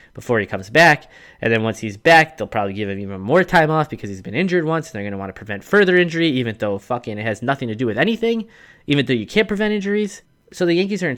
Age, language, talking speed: 20-39, English, 280 wpm